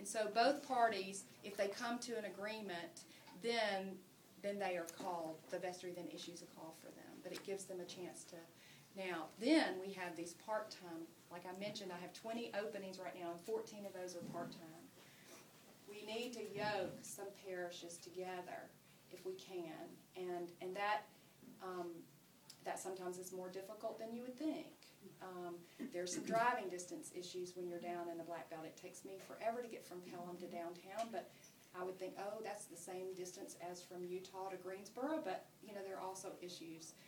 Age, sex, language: 40-59, female, English